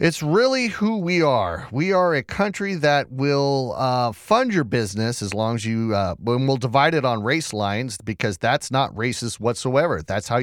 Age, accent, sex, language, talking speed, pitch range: 30-49, American, male, English, 200 wpm, 115-165 Hz